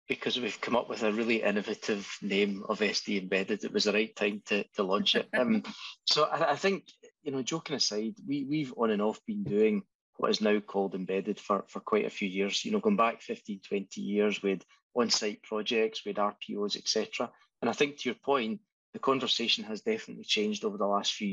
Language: English